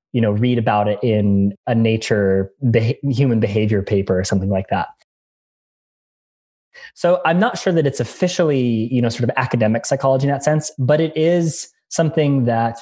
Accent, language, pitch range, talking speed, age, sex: American, English, 115-140 Hz, 170 wpm, 20-39, male